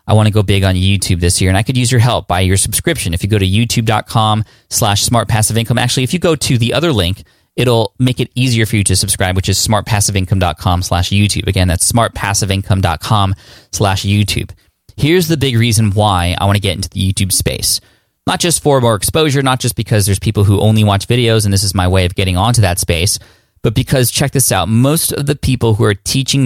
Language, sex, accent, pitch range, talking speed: English, male, American, 100-130 Hz, 230 wpm